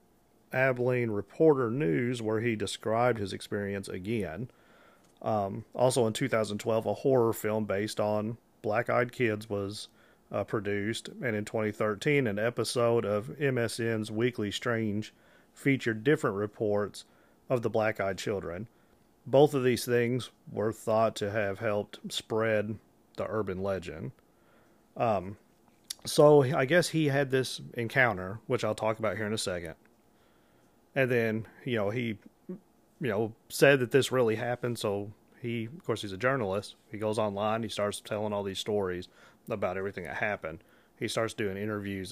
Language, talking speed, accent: English, 150 wpm, American